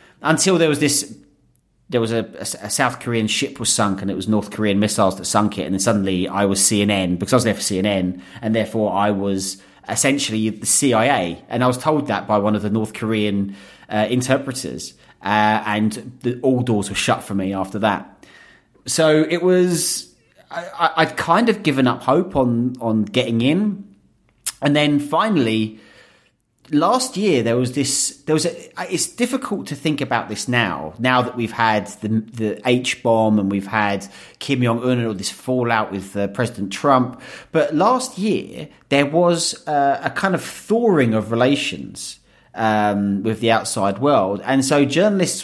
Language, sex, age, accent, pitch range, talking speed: English, male, 30-49, British, 105-140 Hz, 180 wpm